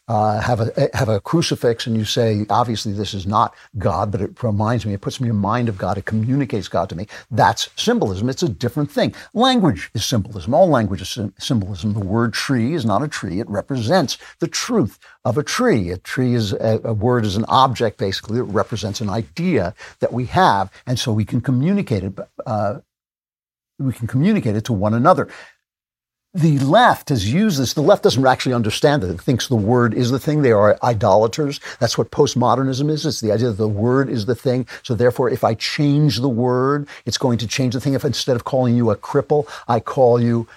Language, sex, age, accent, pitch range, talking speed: English, male, 60-79, American, 110-135 Hz, 215 wpm